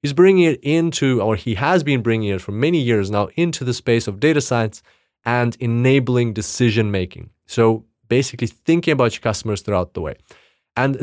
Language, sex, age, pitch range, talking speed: English, male, 30-49, 110-145 Hz, 185 wpm